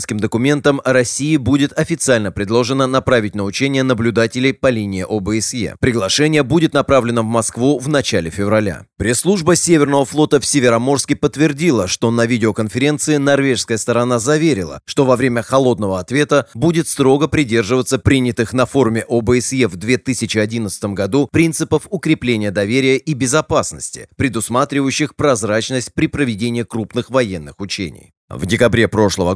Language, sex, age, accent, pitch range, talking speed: Russian, male, 30-49, native, 115-140 Hz, 125 wpm